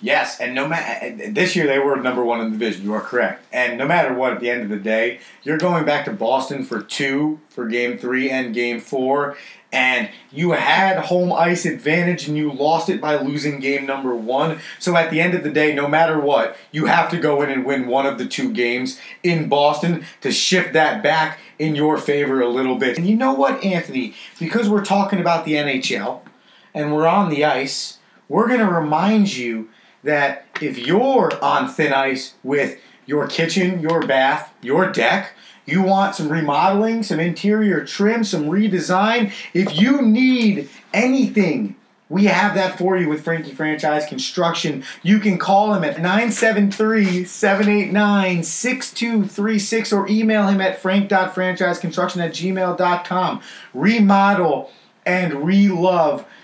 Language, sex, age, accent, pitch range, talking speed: English, male, 30-49, American, 145-195 Hz, 170 wpm